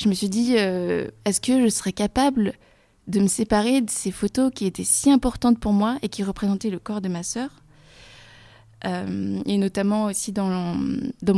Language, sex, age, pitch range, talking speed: French, female, 20-39, 175-215 Hz, 190 wpm